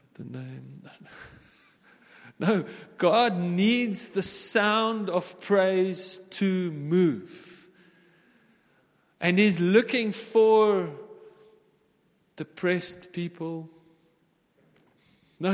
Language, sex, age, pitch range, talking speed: English, male, 40-59, 180-225 Hz, 70 wpm